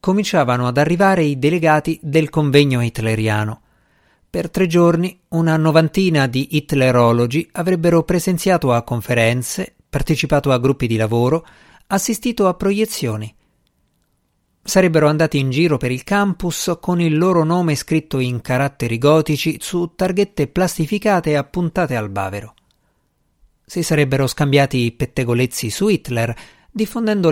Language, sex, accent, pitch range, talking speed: Italian, male, native, 120-170 Hz, 125 wpm